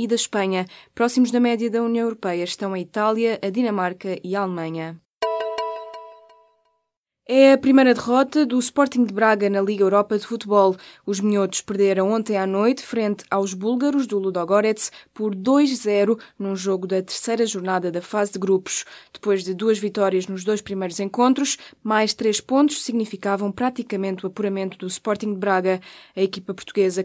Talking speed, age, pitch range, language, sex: 165 wpm, 20-39, 195-245 Hz, Portuguese, female